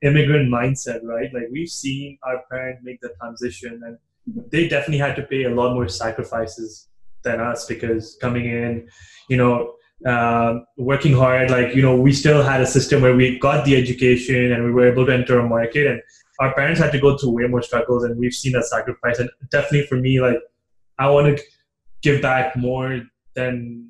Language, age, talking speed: English, 20-39, 200 wpm